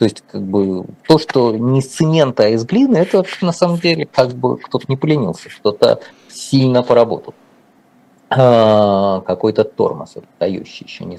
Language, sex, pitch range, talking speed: Russian, male, 115-180 Hz, 170 wpm